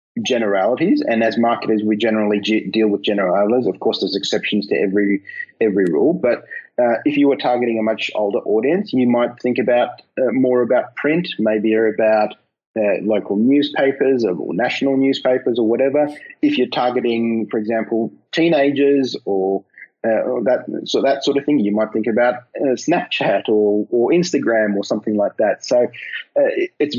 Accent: Australian